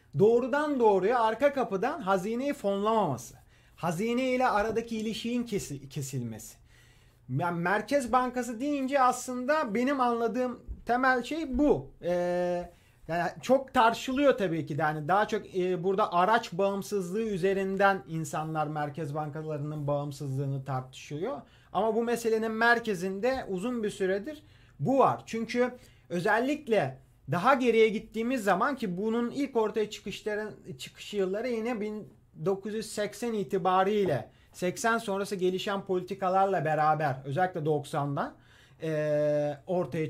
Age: 40-59